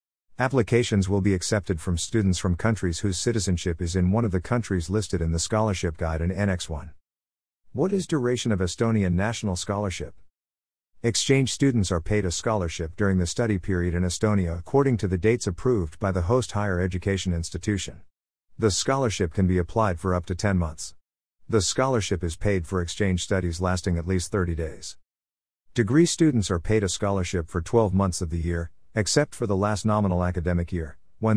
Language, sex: English, male